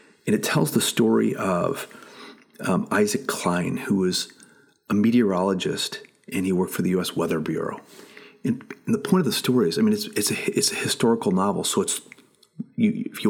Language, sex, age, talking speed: English, male, 30-49, 185 wpm